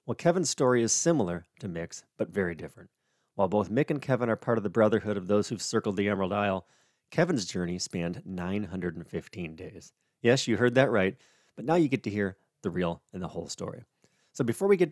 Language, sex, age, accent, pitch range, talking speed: English, male, 30-49, American, 95-130 Hz, 215 wpm